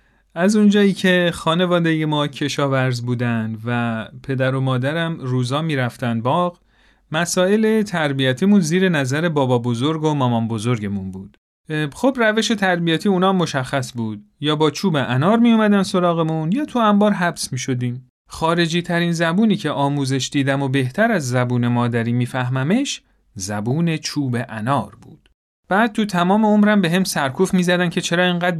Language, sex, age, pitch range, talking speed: Persian, male, 40-59, 135-205 Hz, 150 wpm